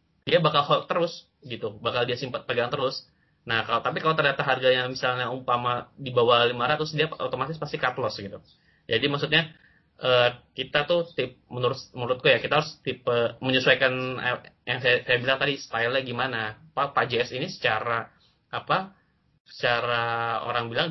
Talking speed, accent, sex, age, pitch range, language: 160 wpm, native, male, 20-39, 115-145 Hz, Indonesian